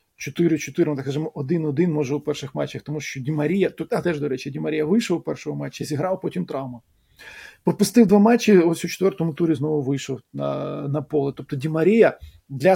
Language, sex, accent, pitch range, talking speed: Ukrainian, male, native, 135-170 Hz, 195 wpm